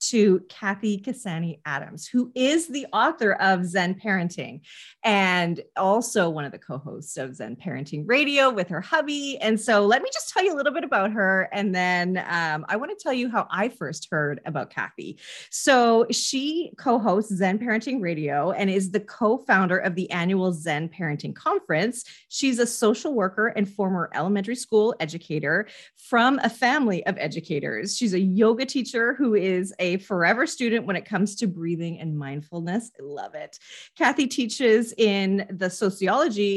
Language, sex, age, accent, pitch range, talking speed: English, female, 30-49, American, 175-225 Hz, 170 wpm